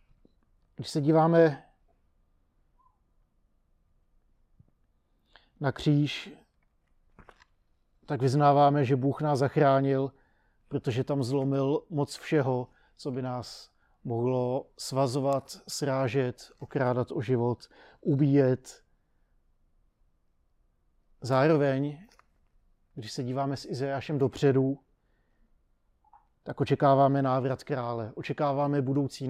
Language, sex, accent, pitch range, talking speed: Czech, male, native, 125-145 Hz, 80 wpm